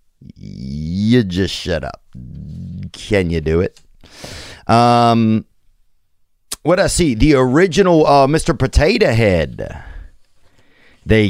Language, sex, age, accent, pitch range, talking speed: English, male, 30-49, American, 85-120 Hz, 100 wpm